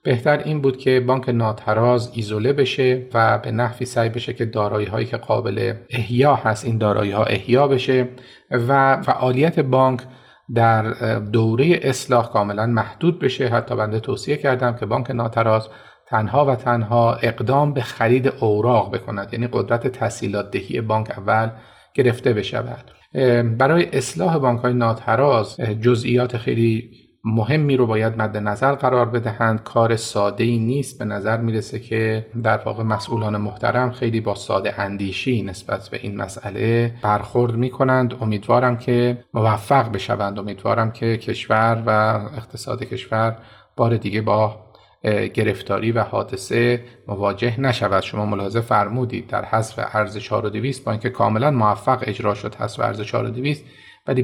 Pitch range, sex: 110-125 Hz, male